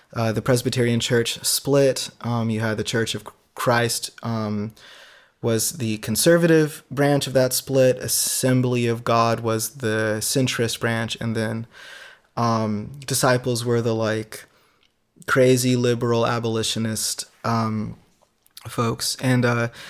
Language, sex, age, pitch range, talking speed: English, male, 20-39, 115-130 Hz, 125 wpm